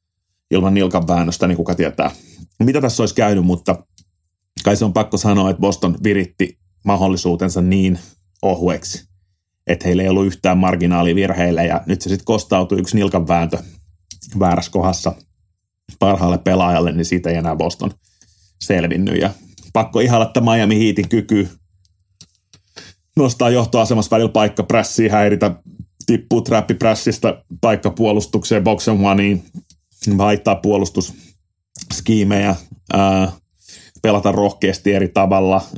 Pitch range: 90-105 Hz